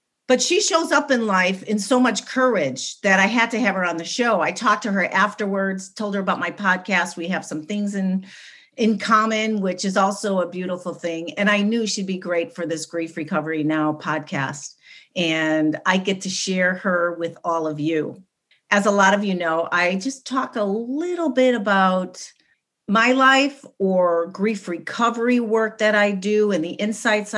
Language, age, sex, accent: English, 40-59, female, American